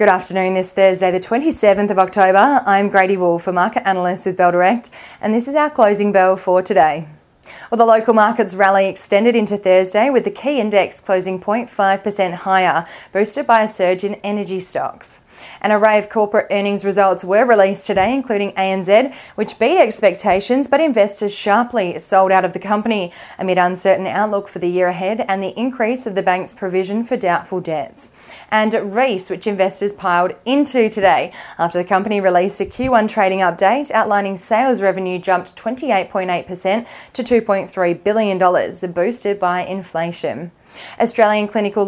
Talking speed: 165 wpm